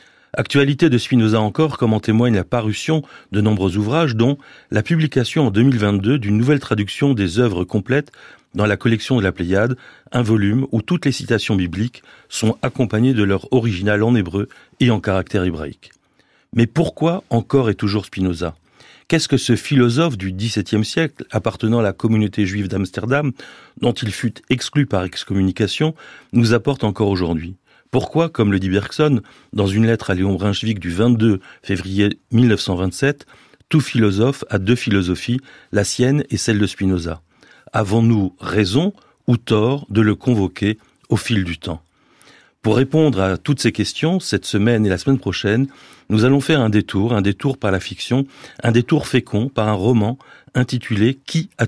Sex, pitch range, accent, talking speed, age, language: male, 100-130 Hz, French, 165 wpm, 40-59, French